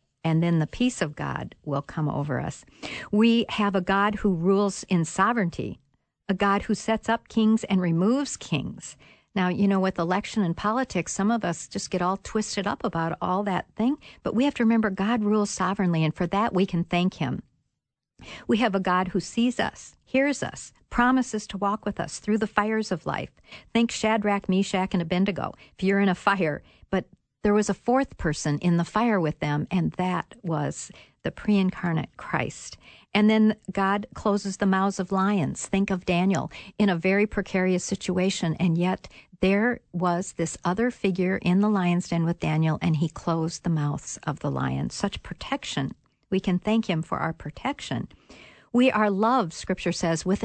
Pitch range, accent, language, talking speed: 170-210 Hz, American, English, 190 wpm